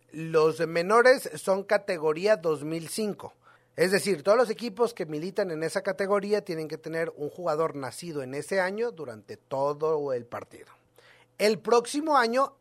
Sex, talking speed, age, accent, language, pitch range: male, 150 wpm, 40-59, Mexican, Spanish, 165-235 Hz